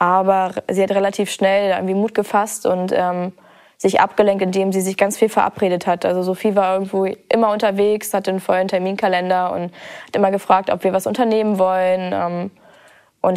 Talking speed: 170 wpm